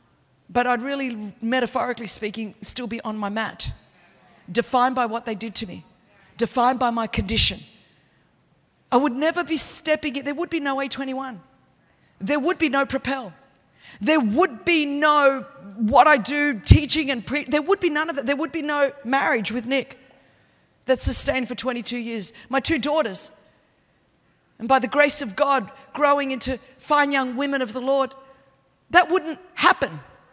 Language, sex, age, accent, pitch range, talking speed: English, female, 40-59, Australian, 255-320 Hz, 170 wpm